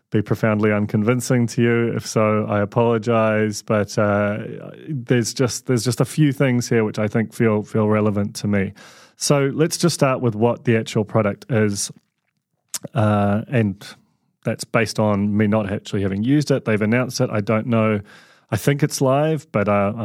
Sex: male